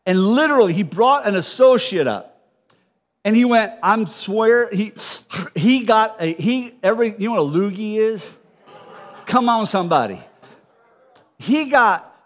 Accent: American